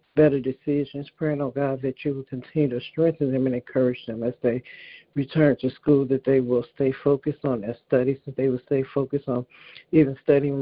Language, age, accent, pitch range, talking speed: English, 60-79, American, 130-145 Hz, 205 wpm